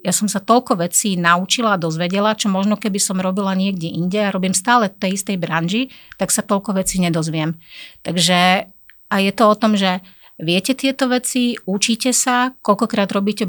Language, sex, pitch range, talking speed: Slovak, female, 180-210 Hz, 180 wpm